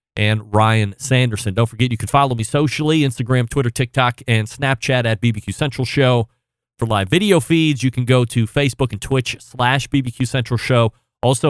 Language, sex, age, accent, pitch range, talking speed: English, male, 30-49, American, 110-135 Hz, 185 wpm